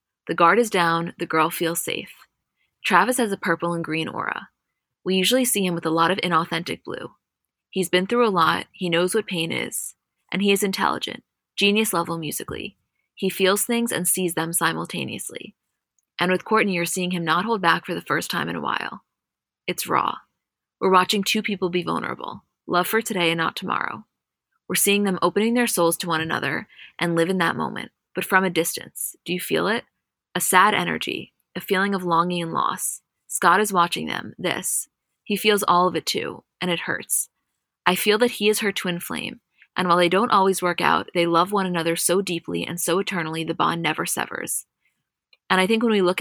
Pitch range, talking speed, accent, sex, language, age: 170-195 Hz, 205 wpm, American, female, English, 20-39